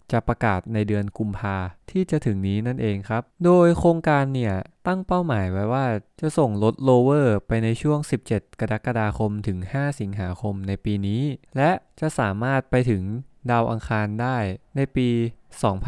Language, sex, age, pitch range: English, male, 20-39, 105-140 Hz